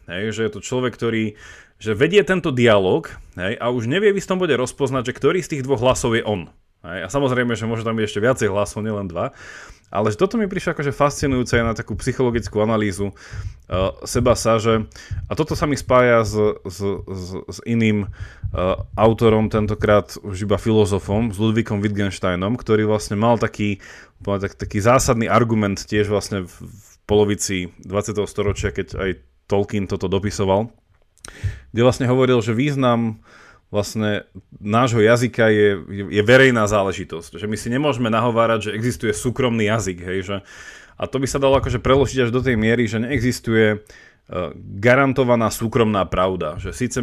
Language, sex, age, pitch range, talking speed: Slovak, male, 30-49, 100-125 Hz, 165 wpm